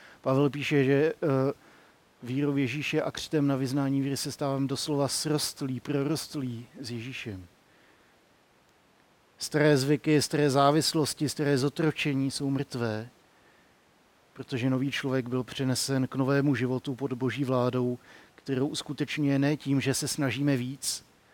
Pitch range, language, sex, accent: 130-145 Hz, Czech, male, native